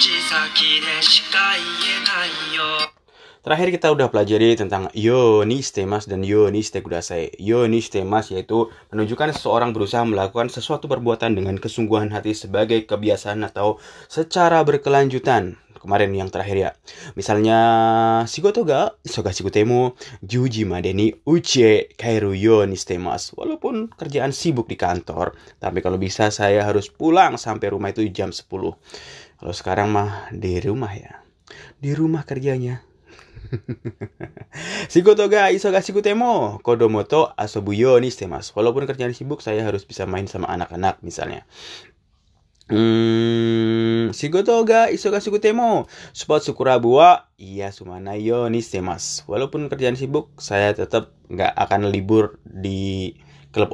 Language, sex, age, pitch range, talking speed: Indonesian, male, 20-39, 105-150 Hz, 120 wpm